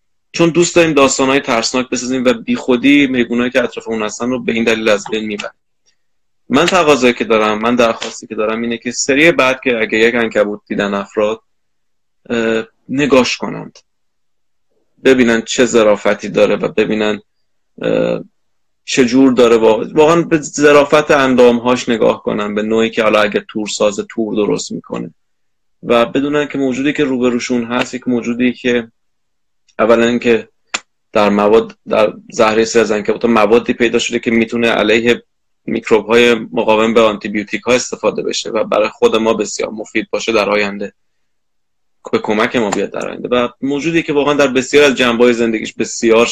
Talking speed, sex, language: 160 wpm, male, Persian